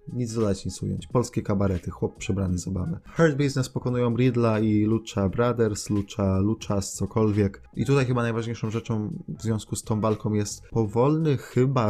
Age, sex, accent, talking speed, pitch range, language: 20-39, male, native, 160 wpm, 105-140 Hz, Polish